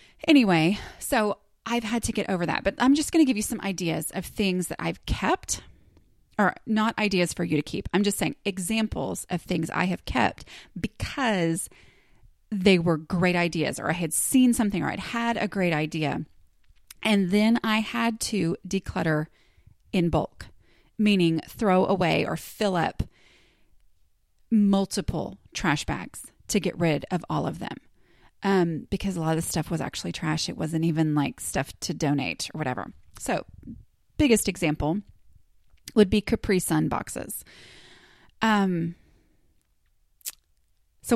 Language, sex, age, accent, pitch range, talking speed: English, female, 30-49, American, 160-210 Hz, 155 wpm